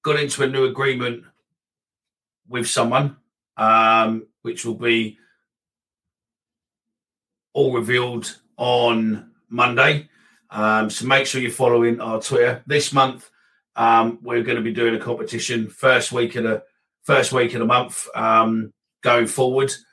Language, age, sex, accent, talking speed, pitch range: English, 40-59, male, British, 125 wpm, 110-130 Hz